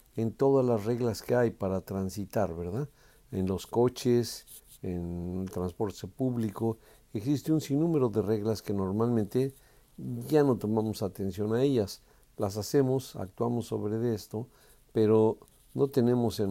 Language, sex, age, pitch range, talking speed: Spanish, male, 50-69, 105-130 Hz, 140 wpm